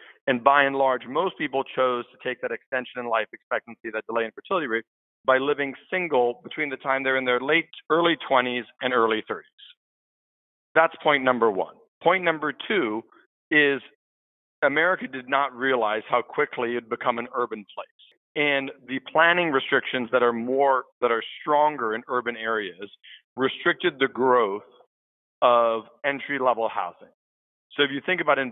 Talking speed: 170 wpm